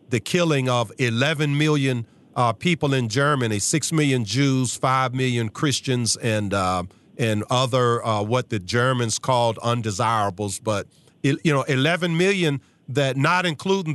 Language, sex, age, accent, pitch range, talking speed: English, male, 50-69, American, 110-145 Hz, 140 wpm